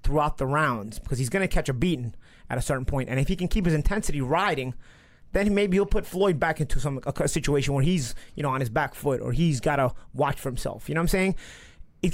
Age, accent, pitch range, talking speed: 30-49, American, 145-210 Hz, 260 wpm